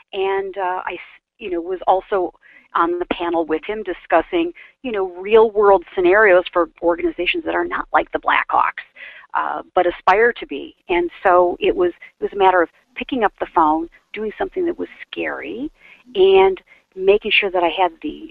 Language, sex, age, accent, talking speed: English, female, 40-59, American, 180 wpm